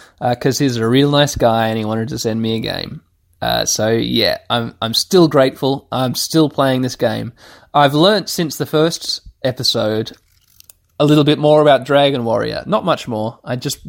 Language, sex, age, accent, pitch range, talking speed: English, male, 20-39, Australian, 120-150 Hz, 195 wpm